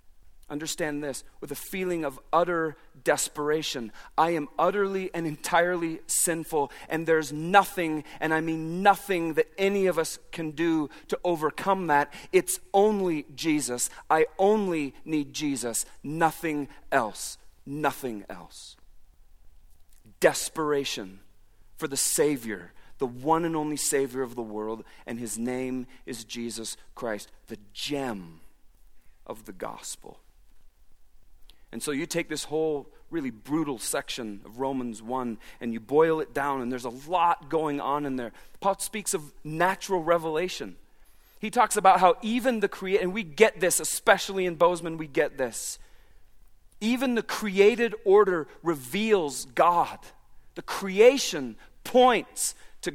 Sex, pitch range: male, 120-185 Hz